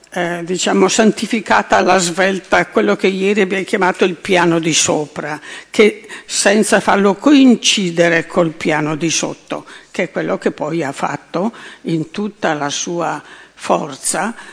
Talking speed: 140 wpm